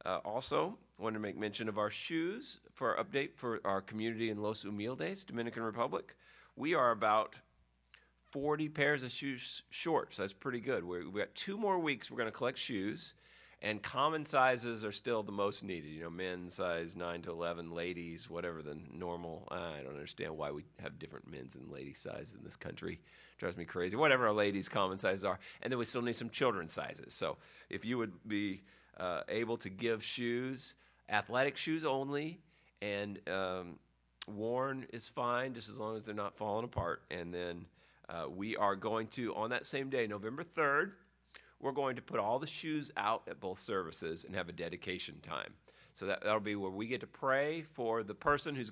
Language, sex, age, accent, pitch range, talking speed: English, male, 40-59, American, 95-125 Hz, 200 wpm